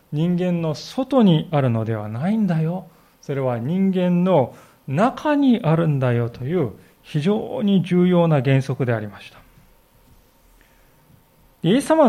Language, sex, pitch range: Japanese, male, 135-190 Hz